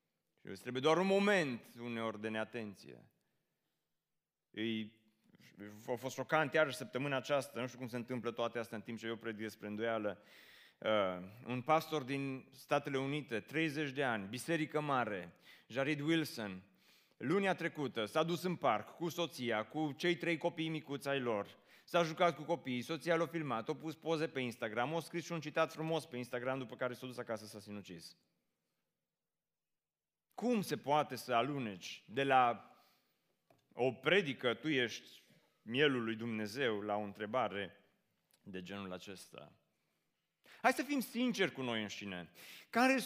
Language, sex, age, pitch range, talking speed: Romanian, male, 30-49, 115-165 Hz, 155 wpm